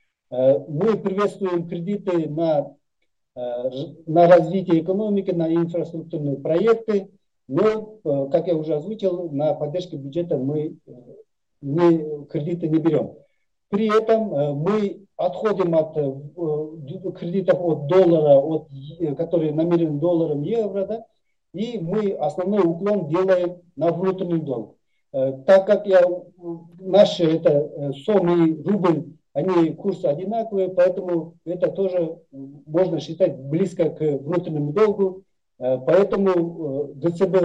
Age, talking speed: 50-69, 105 wpm